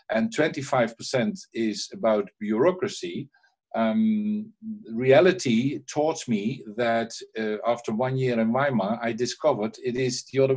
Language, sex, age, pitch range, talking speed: English, male, 50-69, 125-155 Hz, 125 wpm